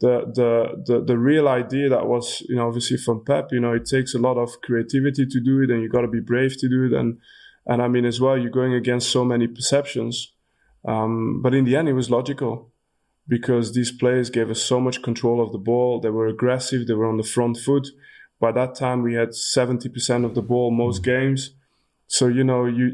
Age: 20-39